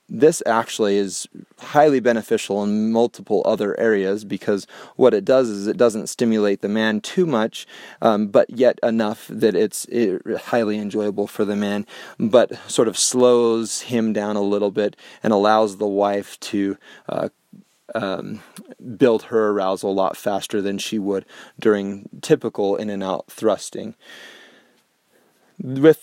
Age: 30-49